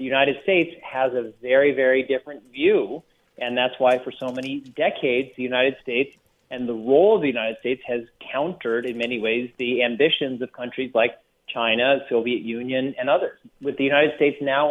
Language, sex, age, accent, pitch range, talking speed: English, male, 40-59, American, 125-140 Hz, 190 wpm